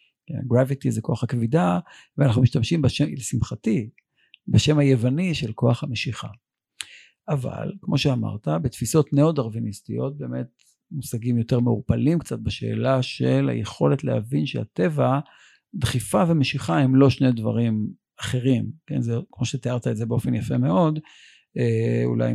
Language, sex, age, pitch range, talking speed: Hebrew, male, 50-69, 115-145 Hz, 125 wpm